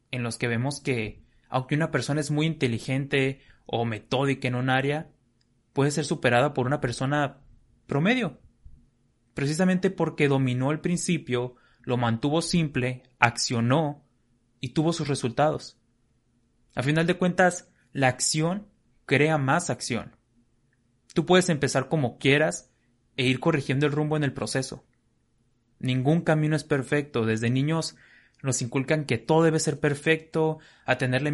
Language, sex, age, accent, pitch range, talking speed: Spanish, male, 20-39, Mexican, 120-150 Hz, 140 wpm